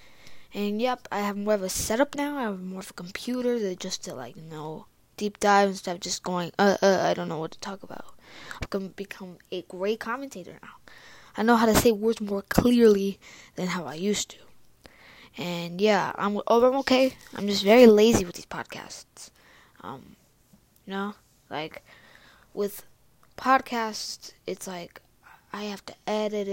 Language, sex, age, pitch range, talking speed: English, female, 20-39, 195-245 Hz, 180 wpm